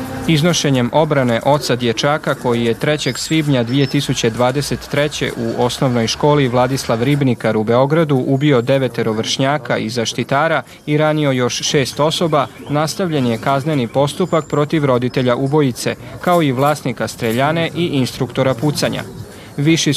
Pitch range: 125-150 Hz